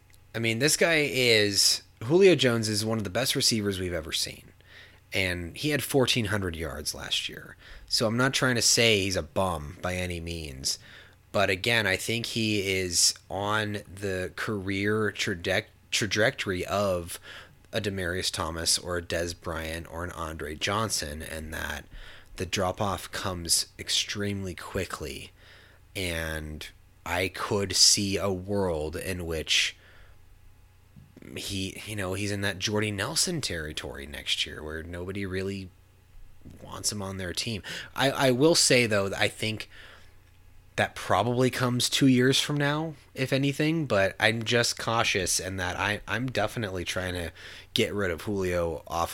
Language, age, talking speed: English, 30-49, 150 wpm